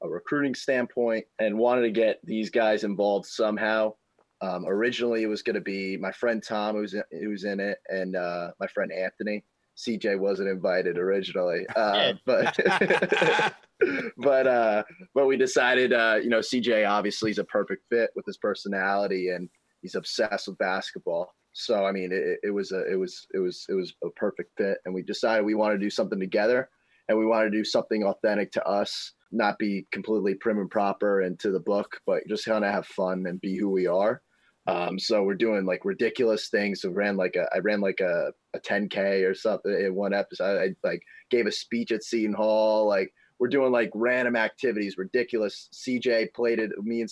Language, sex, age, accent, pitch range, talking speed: English, male, 30-49, American, 100-115 Hz, 200 wpm